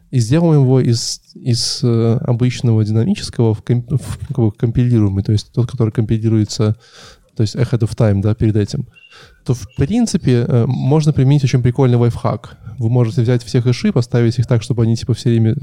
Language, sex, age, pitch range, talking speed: Russian, male, 20-39, 115-130 Hz, 175 wpm